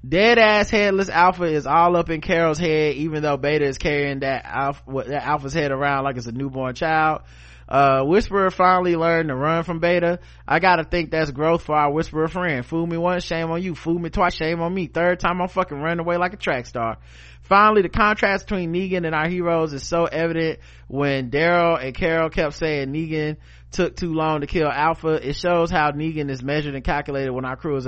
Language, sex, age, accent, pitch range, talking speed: English, male, 20-39, American, 135-190 Hz, 220 wpm